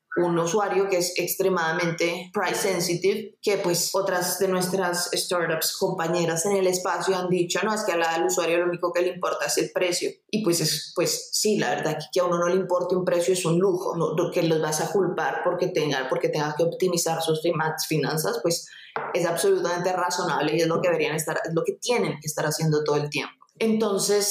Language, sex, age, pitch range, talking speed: Spanish, female, 20-39, 165-200 Hz, 210 wpm